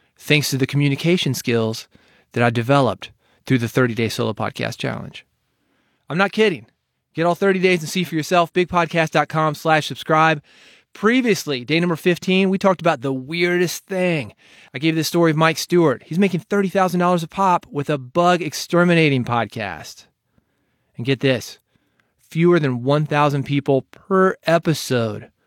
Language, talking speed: English, 150 wpm